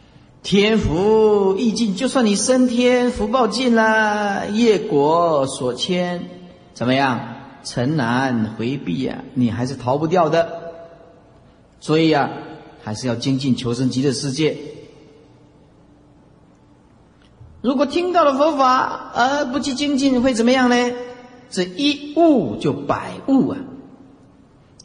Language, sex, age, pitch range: Chinese, male, 50-69, 135-205 Hz